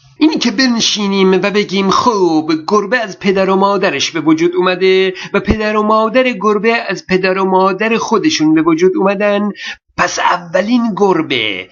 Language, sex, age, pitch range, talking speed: Persian, male, 50-69, 185-225 Hz, 155 wpm